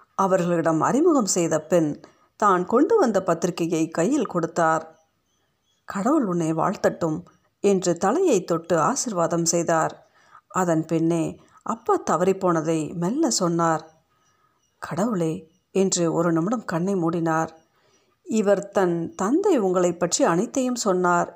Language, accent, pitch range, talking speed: Tamil, native, 165-210 Hz, 100 wpm